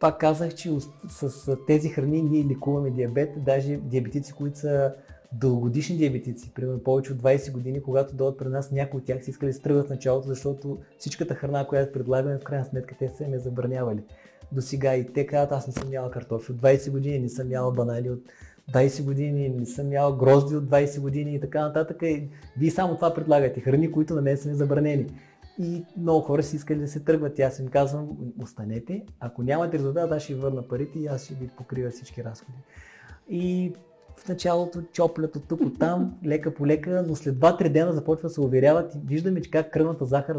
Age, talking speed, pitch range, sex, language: 30-49, 200 wpm, 130-155 Hz, male, Bulgarian